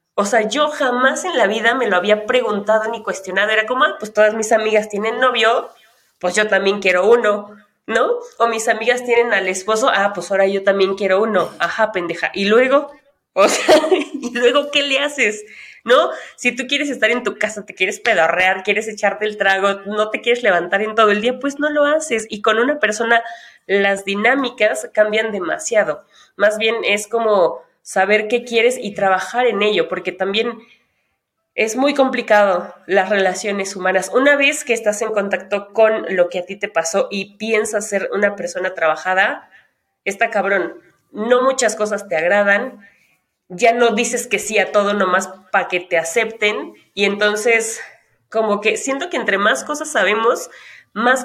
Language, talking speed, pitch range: Spanish, 180 wpm, 195-235 Hz